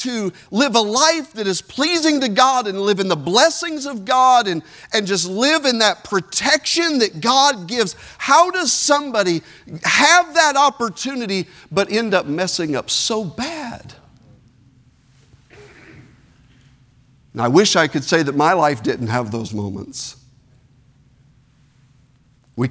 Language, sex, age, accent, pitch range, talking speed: English, male, 50-69, American, 145-230 Hz, 140 wpm